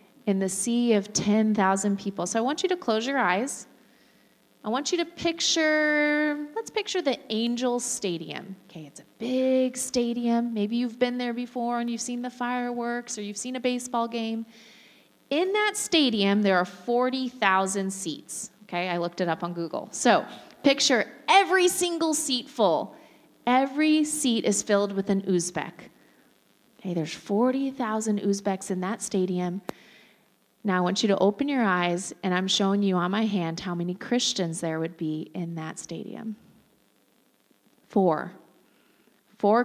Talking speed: 160 wpm